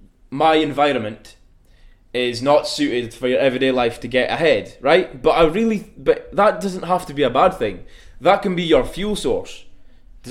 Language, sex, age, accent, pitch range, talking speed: English, male, 20-39, British, 125-160 Hz, 185 wpm